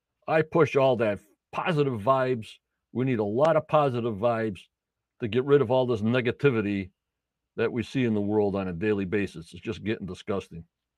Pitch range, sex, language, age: 105-140 Hz, male, English, 60-79